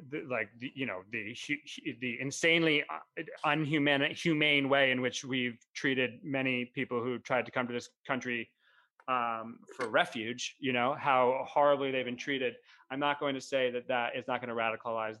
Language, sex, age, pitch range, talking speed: English, male, 30-49, 125-150 Hz, 180 wpm